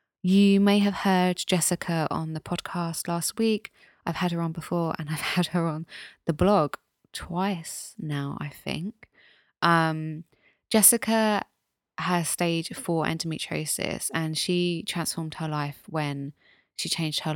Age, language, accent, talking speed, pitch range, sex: 20-39, English, British, 140 wpm, 150-180 Hz, female